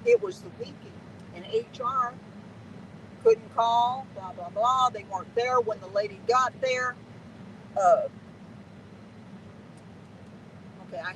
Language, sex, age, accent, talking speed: English, female, 50-69, American, 120 wpm